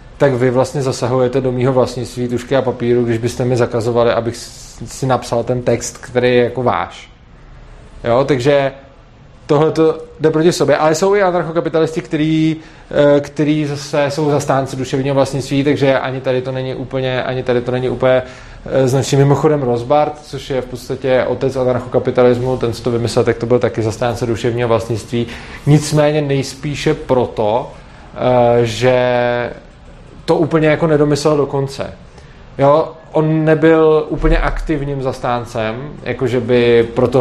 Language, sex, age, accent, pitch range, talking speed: Czech, male, 20-39, native, 125-150 Hz, 135 wpm